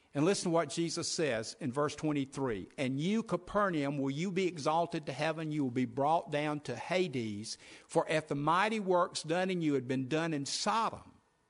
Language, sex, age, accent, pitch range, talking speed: English, male, 60-79, American, 130-165 Hz, 200 wpm